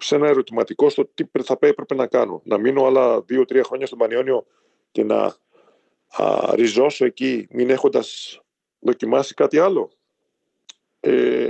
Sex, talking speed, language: male, 140 wpm, Greek